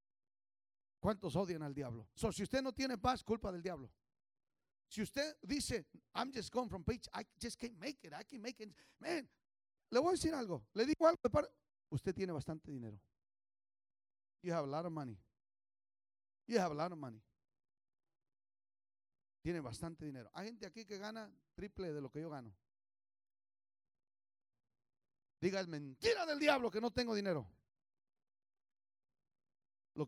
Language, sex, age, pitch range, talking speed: English, male, 40-59, 135-220 Hz, 160 wpm